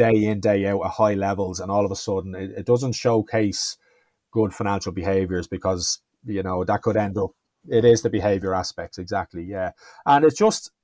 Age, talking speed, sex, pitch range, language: 30-49, 200 wpm, male, 95-120 Hz, English